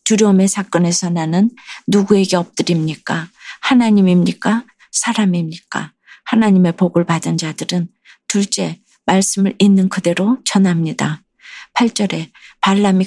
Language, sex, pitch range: Korean, female, 170-200 Hz